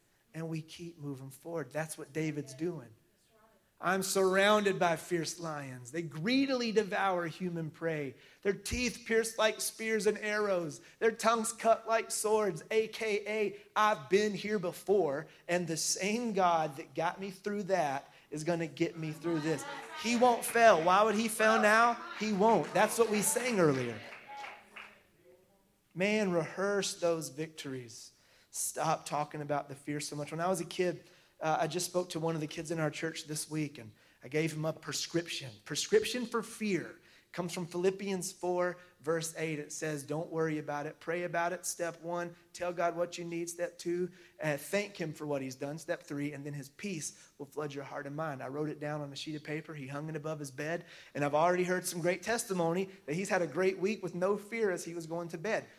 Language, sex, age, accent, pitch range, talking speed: English, male, 30-49, American, 155-200 Hz, 200 wpm